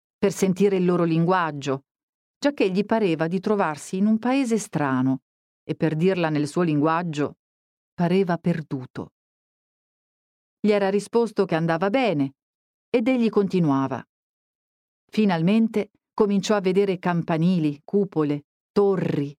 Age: 40-59